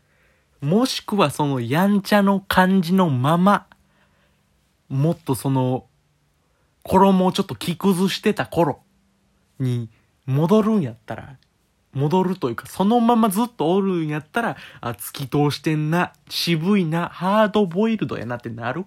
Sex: male